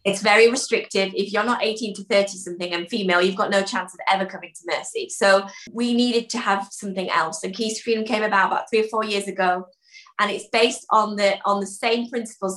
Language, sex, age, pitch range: English, female, 20-39, 190-230 Hz